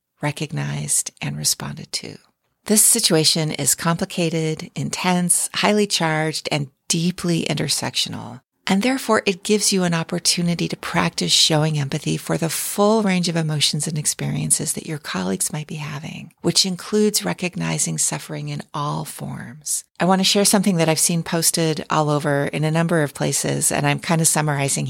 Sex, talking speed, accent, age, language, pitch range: female, 160 wpm, American, 40-59, English, 150-185 Hz